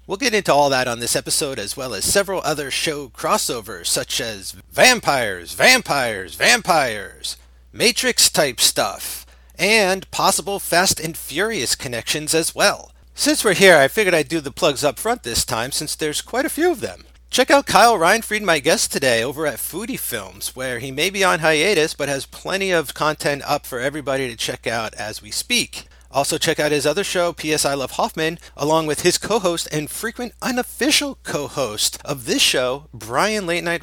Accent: American